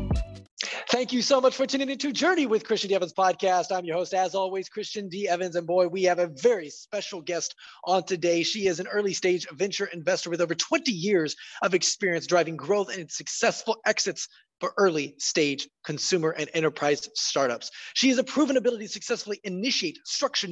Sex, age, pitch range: male, 20-39, 165-220 Hz